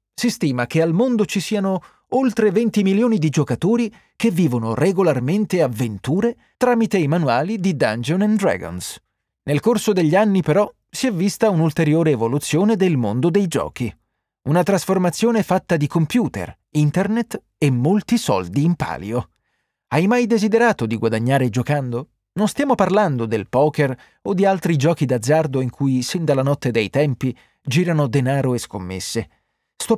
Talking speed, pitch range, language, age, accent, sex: 150 wpm, 125-205 Hz, Italian, 30-49, native, male